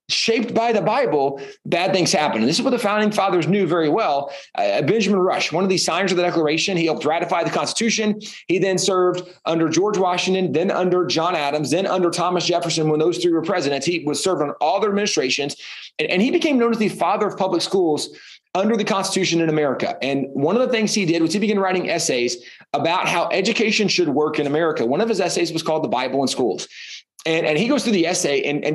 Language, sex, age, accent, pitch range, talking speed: English, male, 30-49, American, 160-205 Hz, 235 wpm